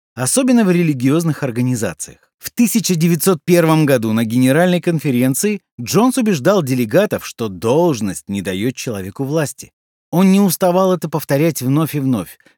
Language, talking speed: Russian, 130 wpm